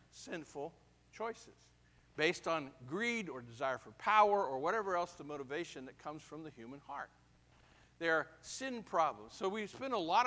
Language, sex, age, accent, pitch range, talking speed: English, male, 50-69, American, 125-160 Hz, 165 wpm